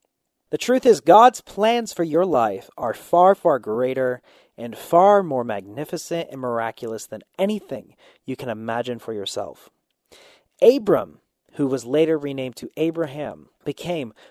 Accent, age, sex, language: American, 30-49, male, English